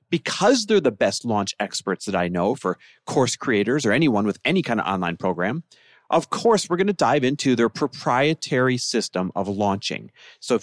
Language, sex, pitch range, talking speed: English, male, 105-155 Hz, 190 wpm